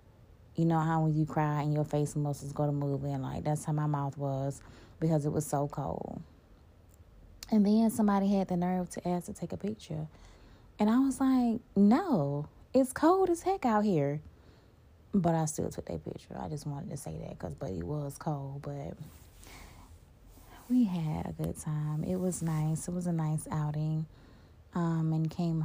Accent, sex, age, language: American, female, 20-39, English